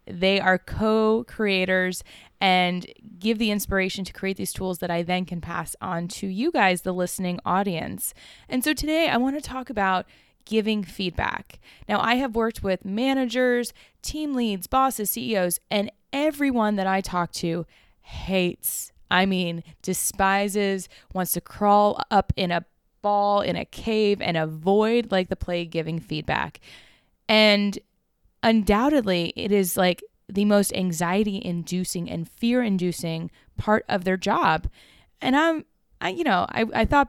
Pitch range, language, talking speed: 180-220 Hz, English, 150 wpm